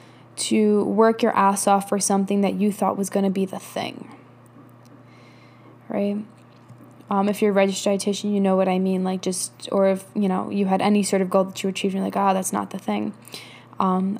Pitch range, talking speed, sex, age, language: 185-205 Hz, 215 wpm, female, 10-29, English